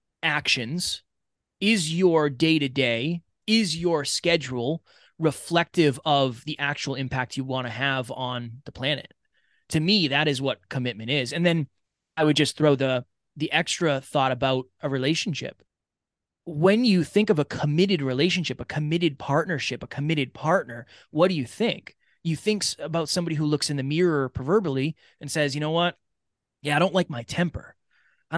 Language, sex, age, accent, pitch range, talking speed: English, male, 20-39, American, 135-175 Hz, 165 wpm